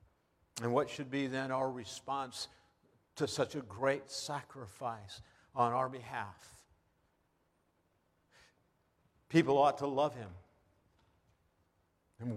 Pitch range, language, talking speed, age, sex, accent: 105-145 Hz, English, 100 wpm, 50-69, male, American